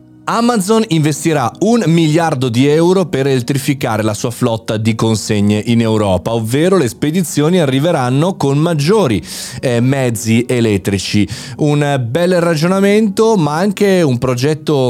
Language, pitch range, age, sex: Italian, 115-155 Hz, 30-49, male